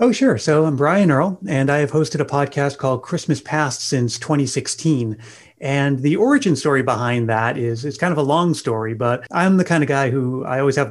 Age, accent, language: 30-49, American, English